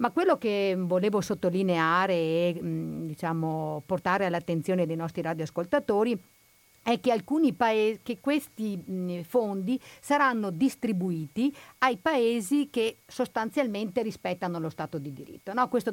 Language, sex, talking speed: Italian, female, 115 wpm